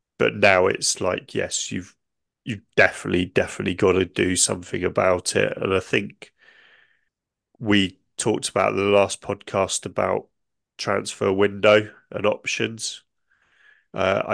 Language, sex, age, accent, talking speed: English, male, 30-49, British, 125 wpm